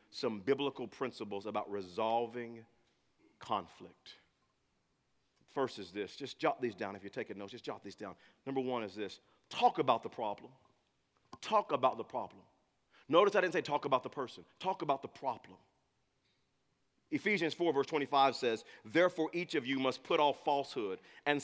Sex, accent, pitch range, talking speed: male, American, 135-215 Hz, 165 wpm